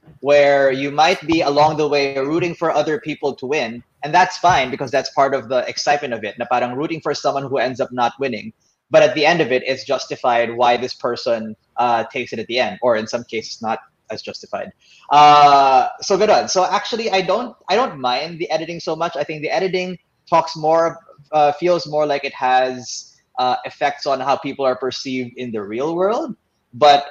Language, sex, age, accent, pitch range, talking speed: English, male, 20-39, Filipino, 125-150 Hz, 215 wpm